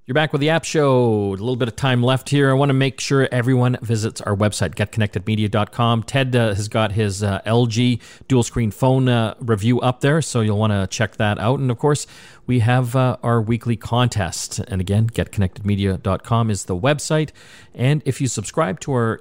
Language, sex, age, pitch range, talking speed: English, male, 40-59, 105-135 Hz, 205 wpm